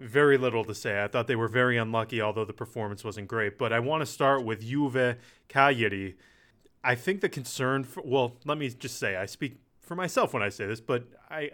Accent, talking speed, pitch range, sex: American, 215 wpm, 110-130 Hz, male